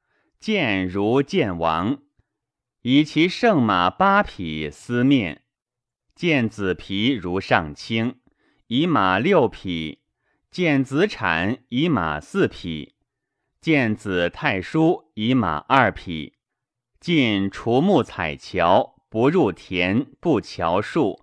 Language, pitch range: Chinese, 90-145 Hz